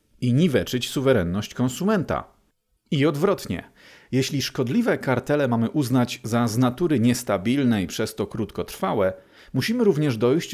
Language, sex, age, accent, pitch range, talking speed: Polish, male, 40-59, native, 110-135 Hz, 125 wpm